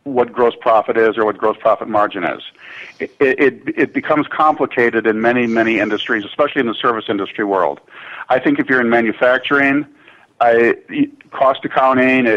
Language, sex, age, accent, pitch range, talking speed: English, male, 50-69, American, 120-140 Hz, 165 wpm